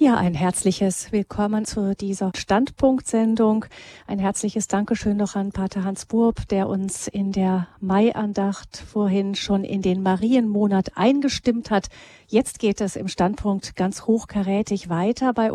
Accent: German